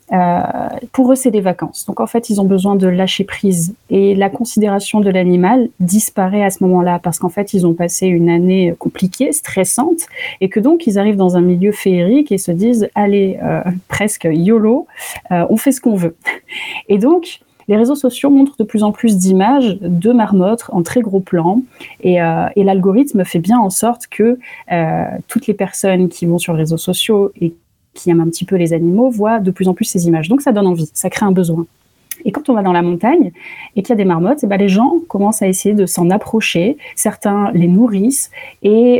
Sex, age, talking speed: female, 30-49, 220 wpm